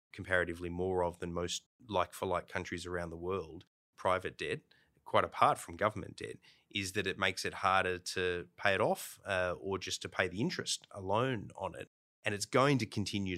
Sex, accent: male, Australian